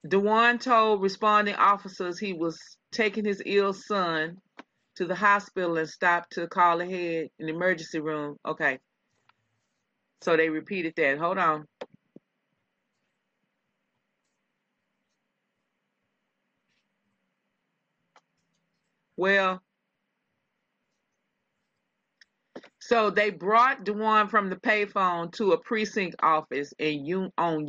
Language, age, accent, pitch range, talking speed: English, 30-49, American, 165-205 Hz, 95 wpm